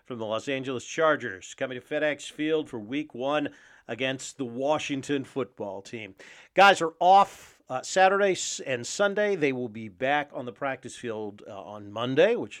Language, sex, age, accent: English, male, 40-59, American